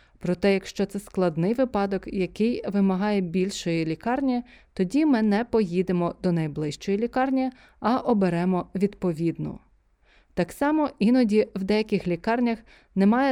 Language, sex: Ukrainian, female